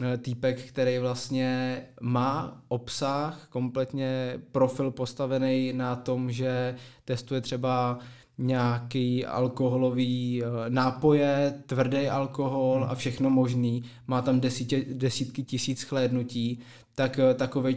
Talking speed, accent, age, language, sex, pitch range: 95 wpm, native, 20-39, Czech, male, 125-135 Hz